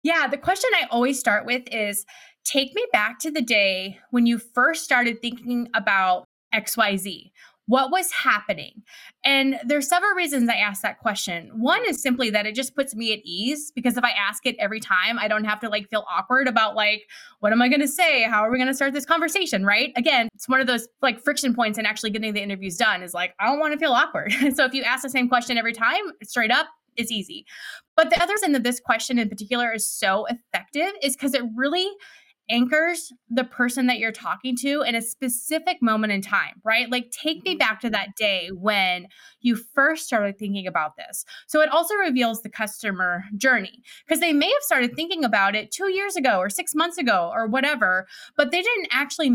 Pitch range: 215-285 Hz